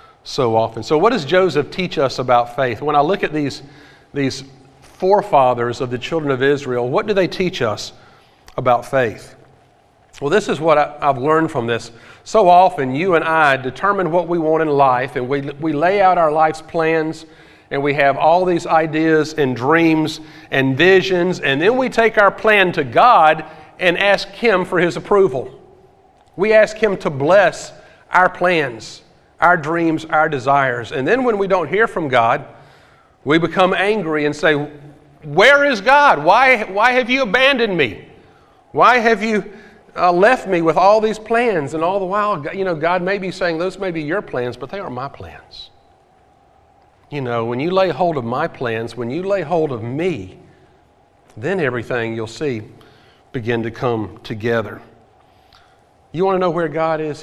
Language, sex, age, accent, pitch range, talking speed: English, male, 40-59, American, 140-190 Hz, 180 wpm